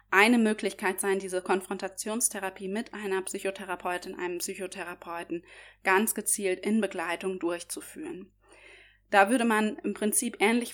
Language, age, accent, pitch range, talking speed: German, 20-39, German, 195-230 Hz, 115 wpm